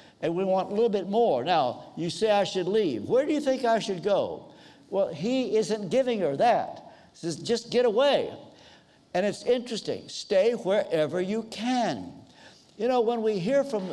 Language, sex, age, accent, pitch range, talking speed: English, male, 60-79, American, 185-235 Hz, 190 wpm